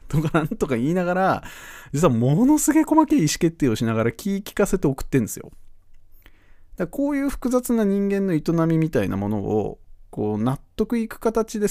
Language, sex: Japanese, male